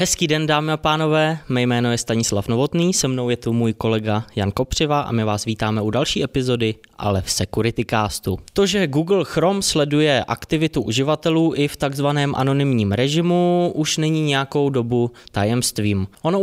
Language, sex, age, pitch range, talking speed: Czech, male, 20-39, 110-145 Hz, 170 wpm